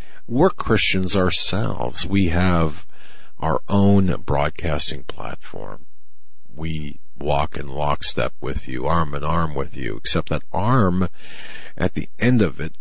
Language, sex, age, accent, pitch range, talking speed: English, male, 50-69, American, 80-100 Hz, 130 wpm